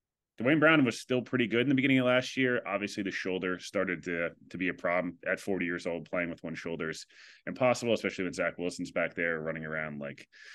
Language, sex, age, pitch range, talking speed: English, male, 30-49, 90-120 Hz, 230 wpm